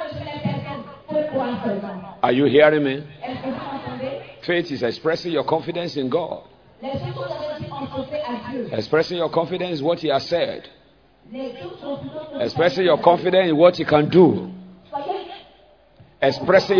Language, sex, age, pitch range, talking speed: English, male, 50-69, 150-250 Hz, 100 wpm